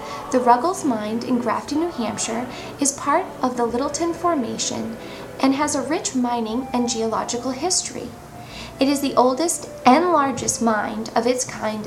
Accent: American